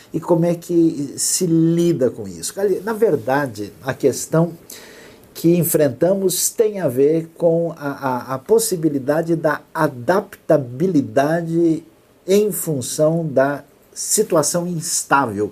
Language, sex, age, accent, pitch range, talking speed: Portuguese, male, 50-69, Brazilian, 130-170 Hz, 110 wpm